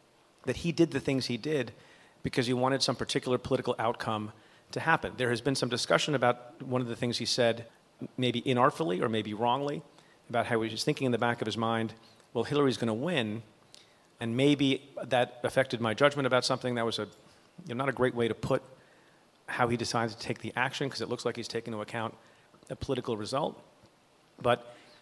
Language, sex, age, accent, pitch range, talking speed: English, male, 40-59, American, 115-135 Hz, 210 wpm